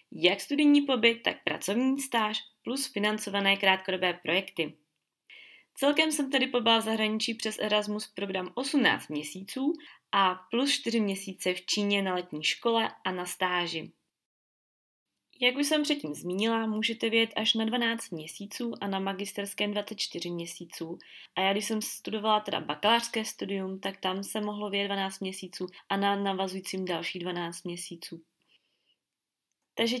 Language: Czech